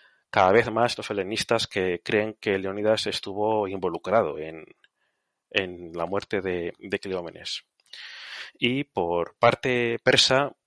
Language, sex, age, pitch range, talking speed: Spanish, male, 30-49, 100-120 Hz, 125 wpm